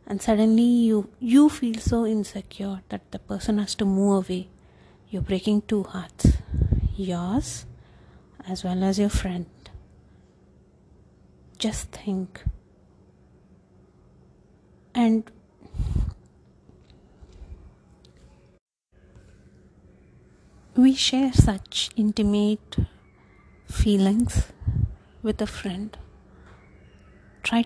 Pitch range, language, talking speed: 185-220 Hz, English, 80 wpm